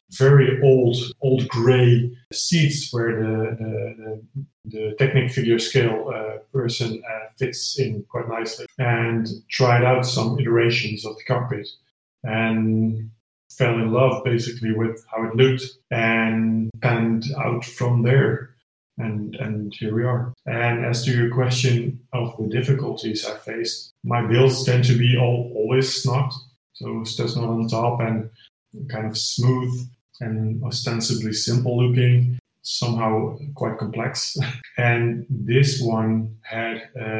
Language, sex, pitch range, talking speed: English, male, 110-125 Hz, 140 wpm